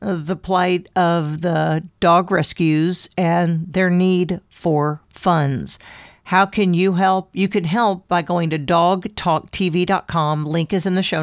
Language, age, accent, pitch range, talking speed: English, 50-69, American, 165-195 Hz, 145 wpm